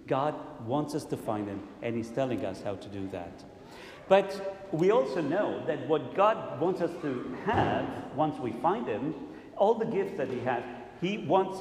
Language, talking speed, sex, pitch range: English, 190 wpm, male, 150-210 Hz